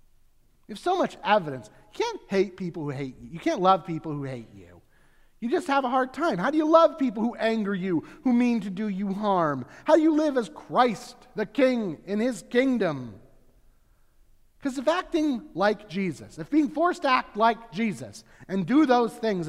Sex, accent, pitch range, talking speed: male, American, 145-230 Hz, 205 wpm